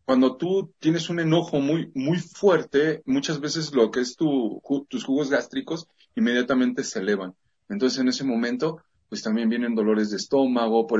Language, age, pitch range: Spanish, 40-59, 110-150 Hz